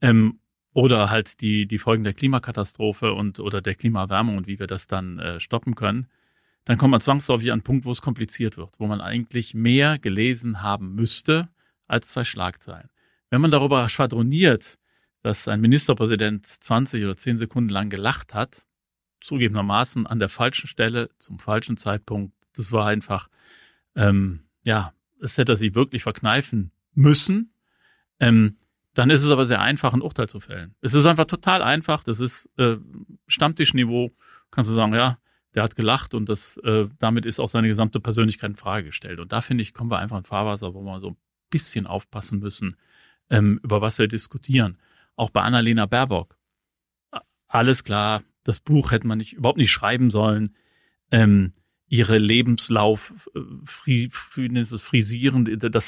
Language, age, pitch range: German, 40-59, 105-125 Hz